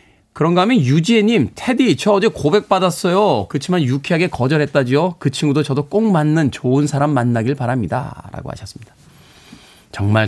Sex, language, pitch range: male, Korean, 120-180 Hz